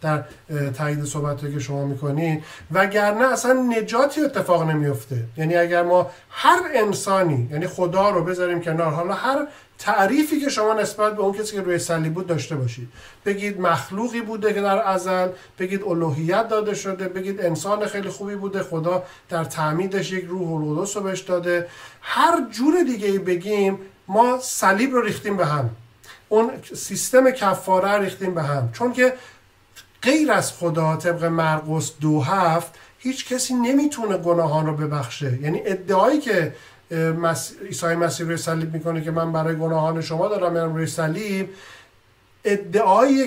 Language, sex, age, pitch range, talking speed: Persian, male, 50-69, 160-205 Hz, 150 wpm